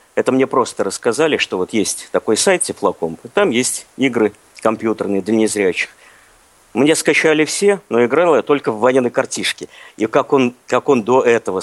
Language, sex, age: Russian, male, 50-69